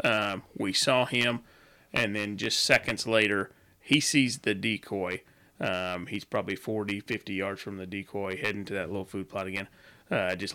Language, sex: English, male